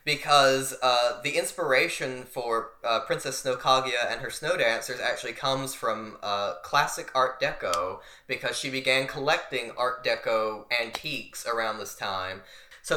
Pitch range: 115-135 Hz